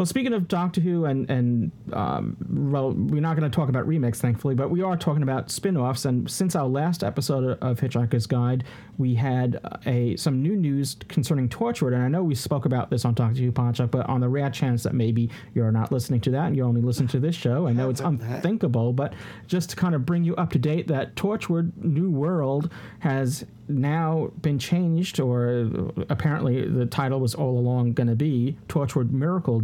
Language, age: English, 40-59